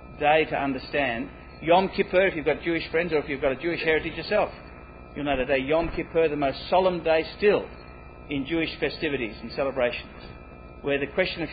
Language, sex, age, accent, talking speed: English, male, 50-69, Australian, 200 wpm